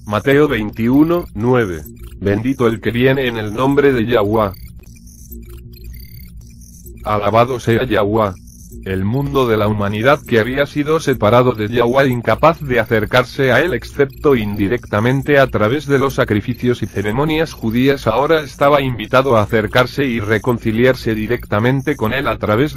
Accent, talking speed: Spanish, 140 wpm